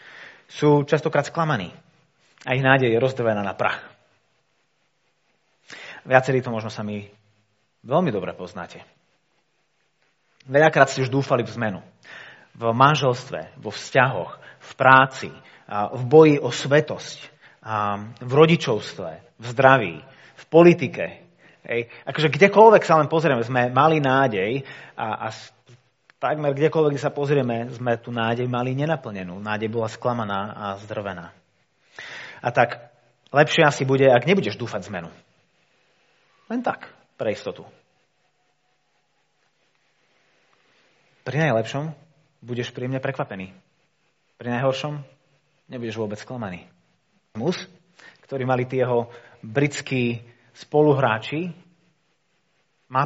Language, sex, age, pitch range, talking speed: Slovak, male, 30-49, 115-150 Hz, 105 wpm